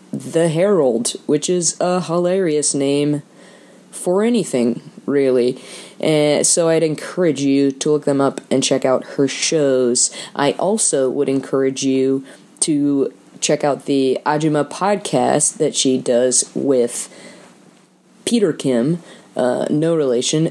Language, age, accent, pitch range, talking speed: English, 20-39, American, 130-165 Hz, 125 wpm